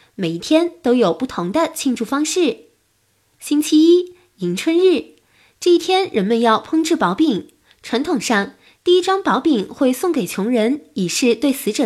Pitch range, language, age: 245-335 Hz, Chinese, 20-39